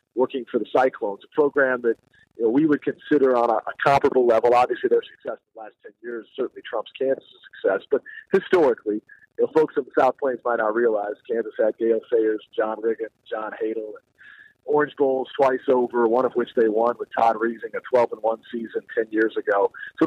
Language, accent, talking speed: English, American, 210 wpm